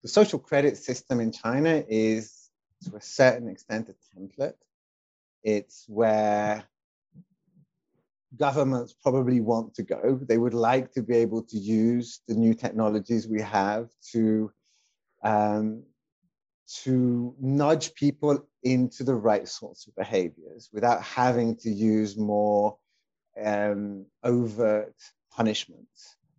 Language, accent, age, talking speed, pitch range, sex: English, British, 30-49, 115 wpm, 110-130 Hz, male